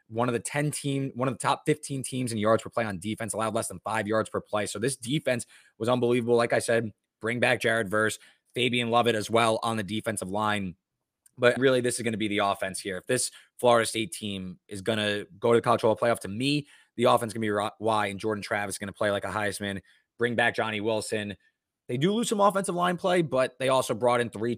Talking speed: 255 wpm